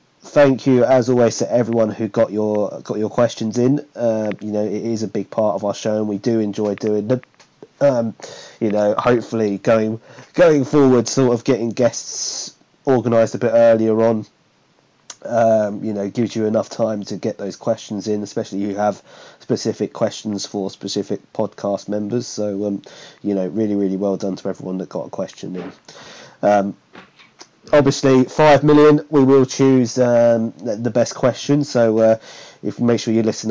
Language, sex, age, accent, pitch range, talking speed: English, male, 30-49, British, 105-130 Hz, 180 wpm